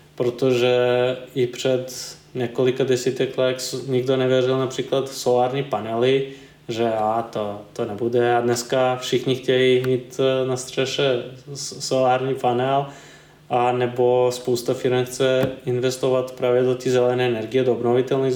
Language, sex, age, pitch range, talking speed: Czech, male, 20-39, 125-135 Hz, 120 wpm